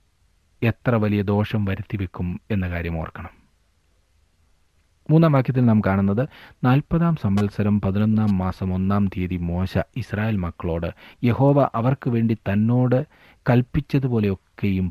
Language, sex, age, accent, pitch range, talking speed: Malayalam, male, 30-49, native, 85-115 Hz, 105 wpm